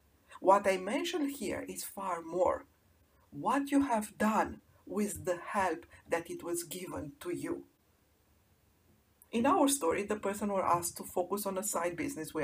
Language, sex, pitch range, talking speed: English, female, 170-240 Hz, 165 wpm